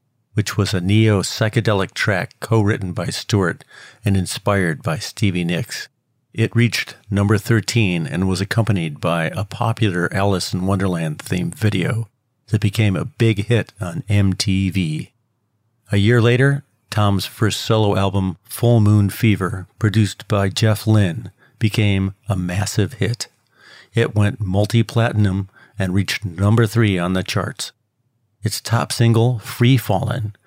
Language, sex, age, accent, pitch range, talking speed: English, male, 50-69, American, 100-115 Hz, 130 wpm